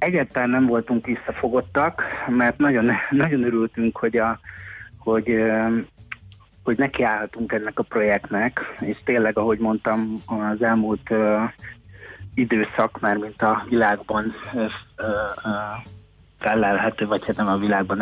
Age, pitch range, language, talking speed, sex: 30-49, 105-120 Hz, Hungarian, 105 wpm, male